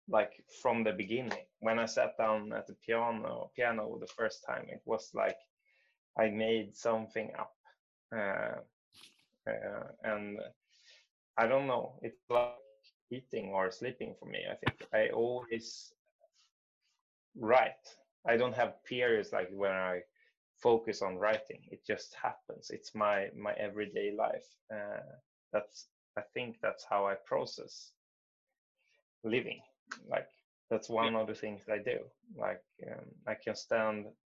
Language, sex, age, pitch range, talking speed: English, male, 20-39, 100-125 Hz, 140 wpm